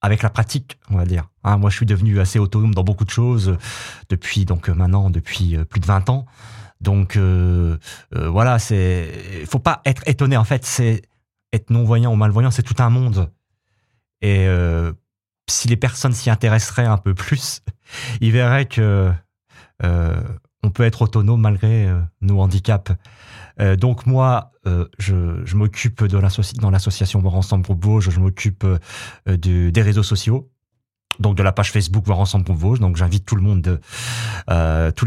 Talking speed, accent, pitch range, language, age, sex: 170 wpm, French, 95-115 Hz, French, 30-49, male